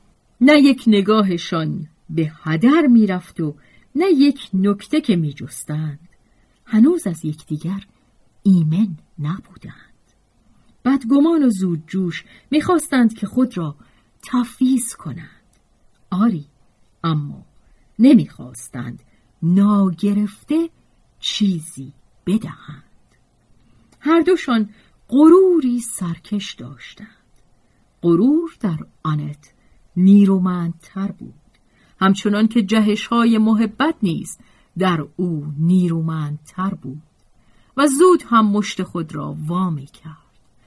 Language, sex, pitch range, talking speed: Persian, female, 160-235 Hz, 95 wpm